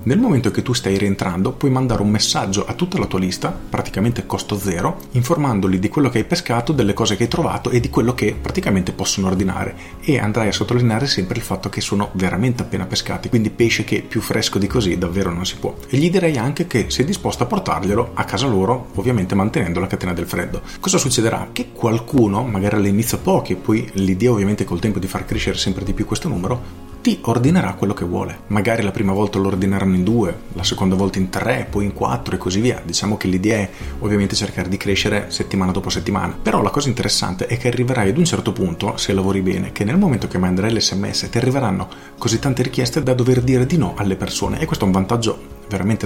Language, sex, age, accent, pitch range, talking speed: Italian, male, 40-59, native, 95-120 Hz, 225 wpm